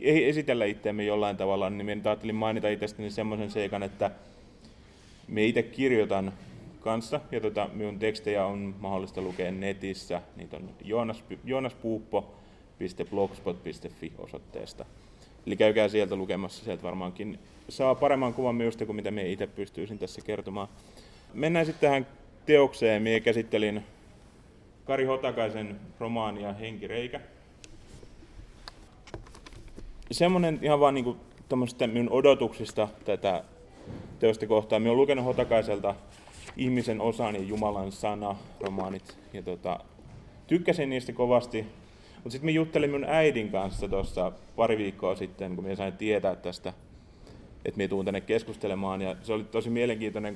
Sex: male